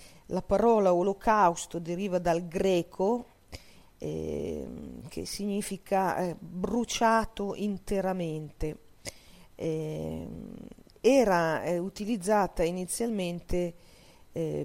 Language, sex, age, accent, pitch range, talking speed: Italian, female, 40-59, native, 175-205 Hz, 75 wpm